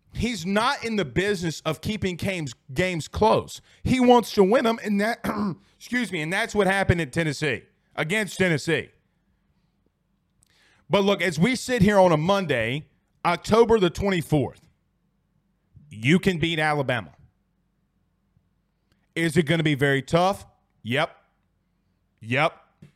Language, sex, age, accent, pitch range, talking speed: English, male, 30-49, American, 145-195 Hz, 135 wpm